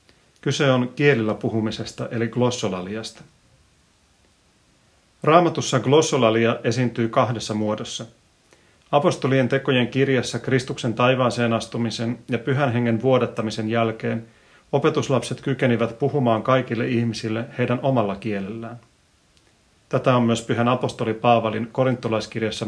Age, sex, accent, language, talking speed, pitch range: 30-49, male, native, Finnish, 100 wpm, 110-135 Hz